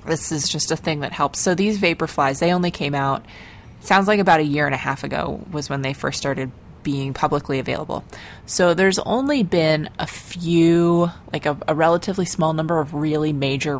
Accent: American